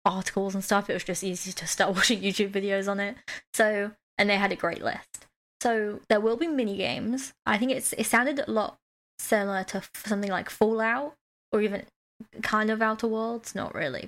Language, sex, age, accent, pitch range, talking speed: English, female, 20-39, British, 195-230 Hz, 200 wpm